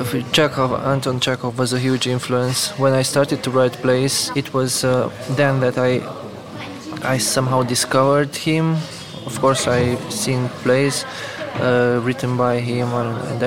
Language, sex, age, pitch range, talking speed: English, male, 20-39, 125-140 Hz, 145 wpm